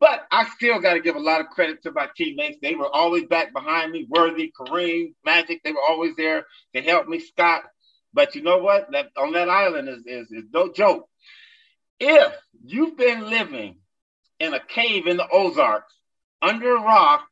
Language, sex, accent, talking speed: English, male, American, 195 wpm